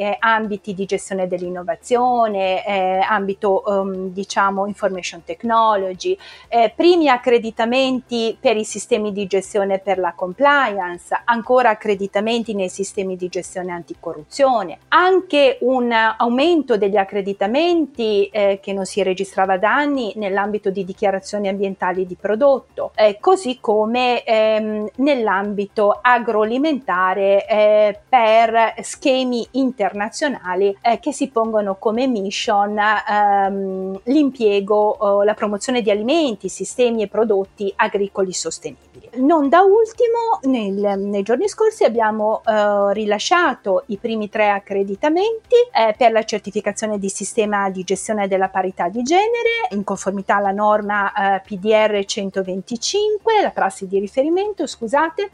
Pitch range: 195-250 Hz